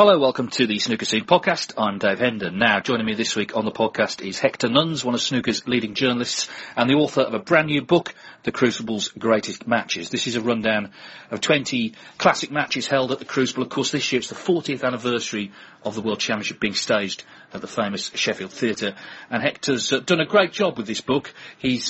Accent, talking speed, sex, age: British, 220 wpm, male, 40-59